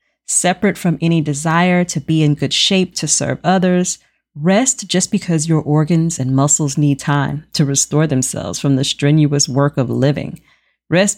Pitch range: 150-190 Hz